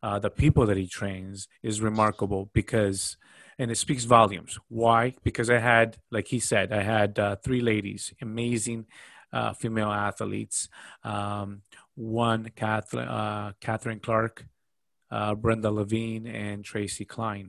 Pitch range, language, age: 105-120 Hz, English, 30-49